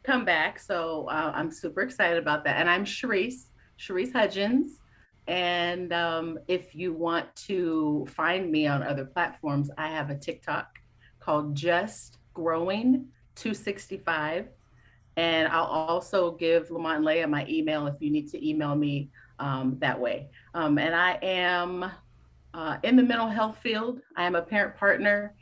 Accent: American